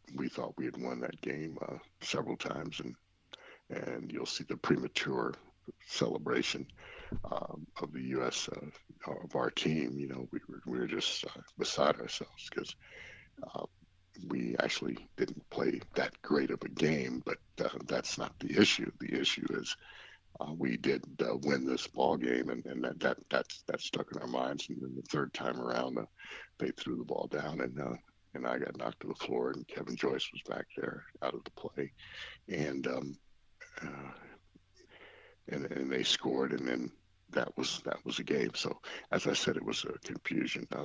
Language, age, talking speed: English, 60-79, 190 wpm